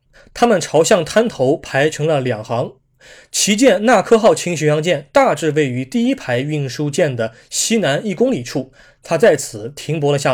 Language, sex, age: Chinese, male, 20-39